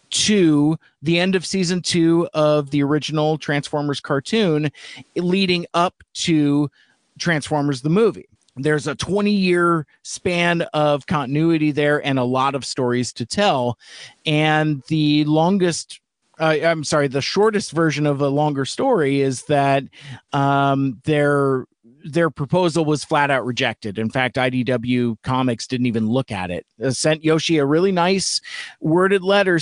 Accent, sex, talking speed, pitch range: American, male, 145 wpm, 135-170 Hz